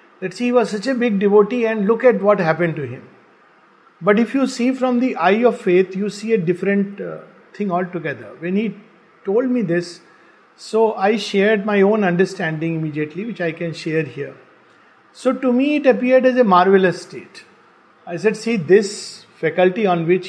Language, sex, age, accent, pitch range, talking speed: English, male, 50-69, Indian, 165-220 Hz, 190 wpm